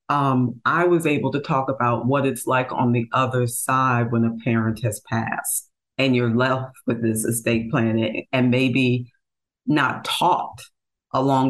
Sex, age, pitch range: female, 50-69, 120-135 Hz